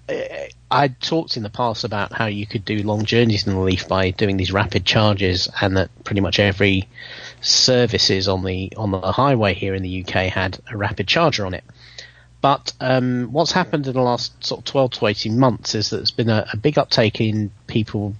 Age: 30-49